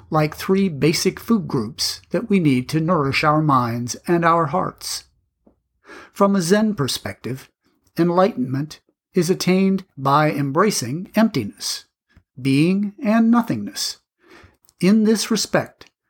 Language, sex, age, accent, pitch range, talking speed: English, male, 50-69, American, 140-195 Hz, 115 wpm